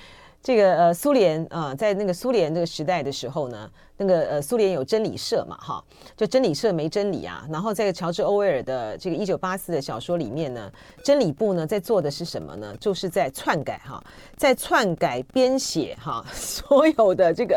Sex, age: female, 40-59